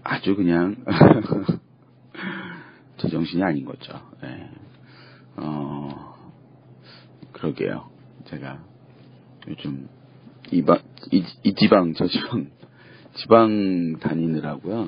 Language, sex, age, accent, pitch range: Korean, male, 40-59, native, 80-100 Hz